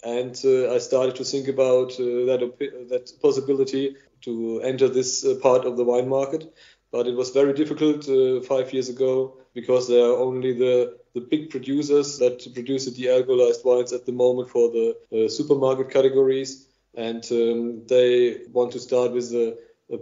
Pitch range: 125-145 Hz